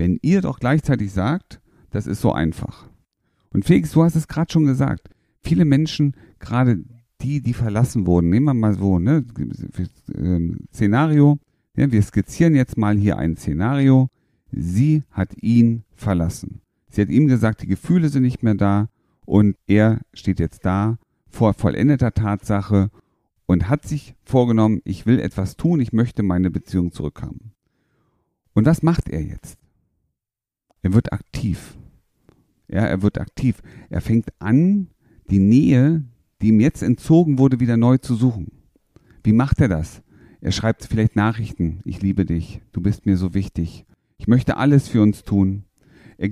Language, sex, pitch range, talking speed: German, male, 100-135 Hz, 155 wpm